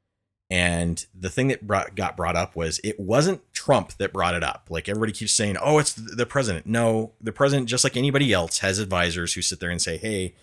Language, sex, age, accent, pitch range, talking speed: English, male, 30-49, American, 85-110 Hz, 220 wpm